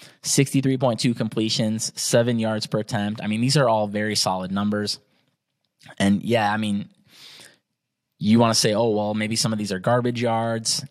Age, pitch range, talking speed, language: 20-39, 100-120 Hz, 165 wpm, English